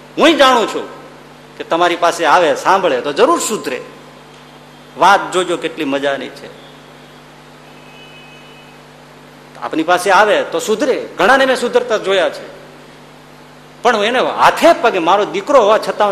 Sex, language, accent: male, Gujarati, native